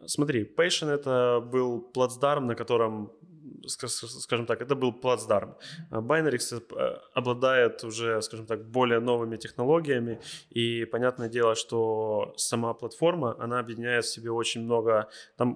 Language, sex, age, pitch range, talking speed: Ukrainian, male, 20-39, 110-125 Hz, 125 wpm